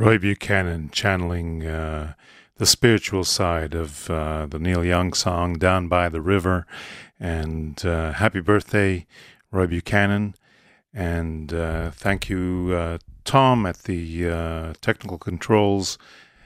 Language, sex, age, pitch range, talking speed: English, male, 40-59, 85-100 Hz, 125 wpm